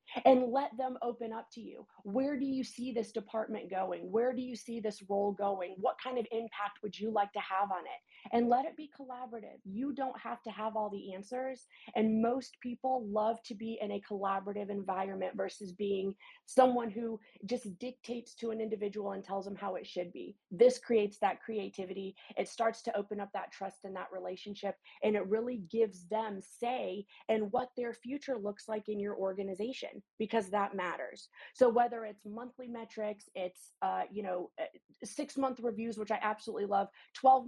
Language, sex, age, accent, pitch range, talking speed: English, female, 30-49, American, 200-245 Hz, 190 wpm